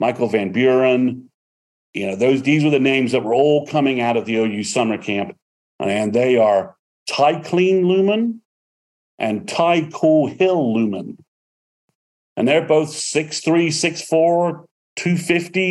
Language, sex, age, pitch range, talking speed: English, male, 40-59, 115-155 Hz, 140 wpm